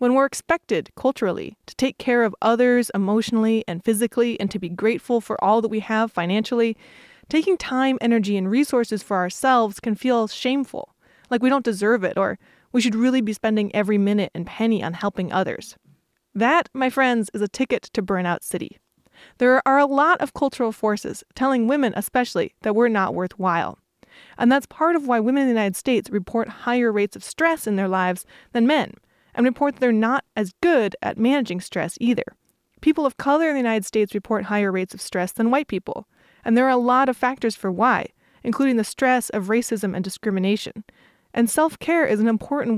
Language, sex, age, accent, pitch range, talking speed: English, female, 20-39, American, 210-260 Hz, 195 wpm